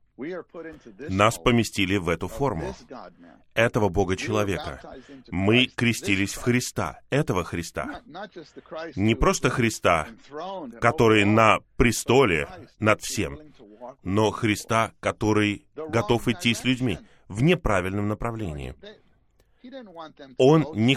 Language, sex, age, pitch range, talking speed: Russian, male, 20-39, 105-145 Hz, 95 wpm